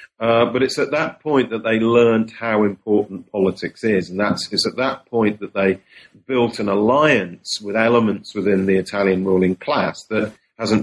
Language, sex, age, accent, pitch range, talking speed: English, male, 40-59, British, 100-125 Hz, 185 wpm